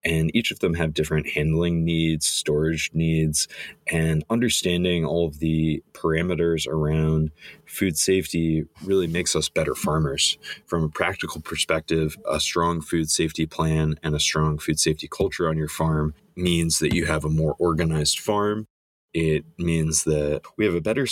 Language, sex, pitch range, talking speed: English, male, 80-85 Hz, 160 wpm